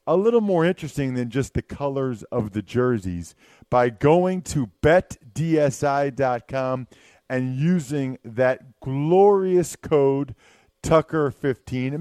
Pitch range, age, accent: 115-150 Hz, 40-59, American